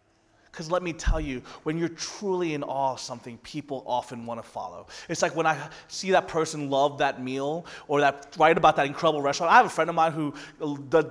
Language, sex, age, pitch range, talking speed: English, male, 30-49, 140-200 Hz, 225 wpm